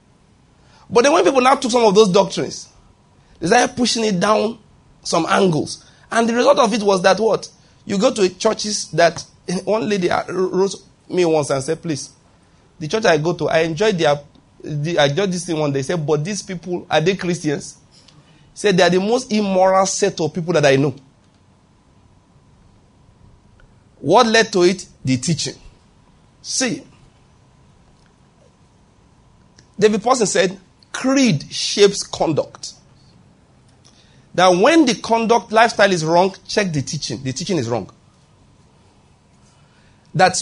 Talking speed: 145 wpm